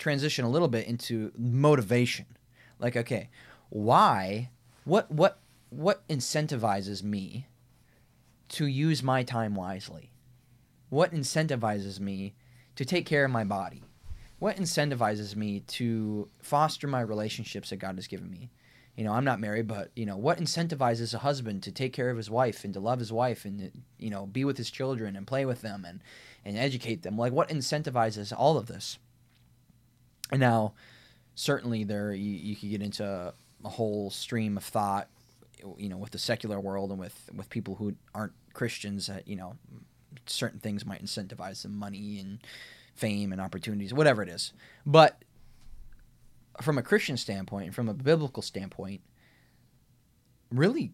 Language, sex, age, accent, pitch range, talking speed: English, male, 20-39, American, 105-130 Hz, 160 wpm